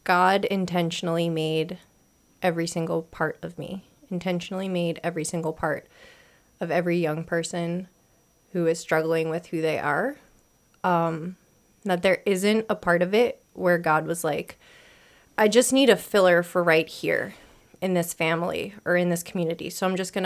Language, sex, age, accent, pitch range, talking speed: English, female, 30-49, American, 170-195 Hz, 165 wpm